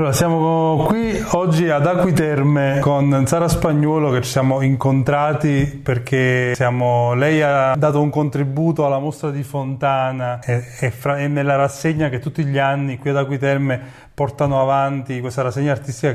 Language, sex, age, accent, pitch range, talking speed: Italian, male, 30-49, native, 130-155 Hz, 150 wpm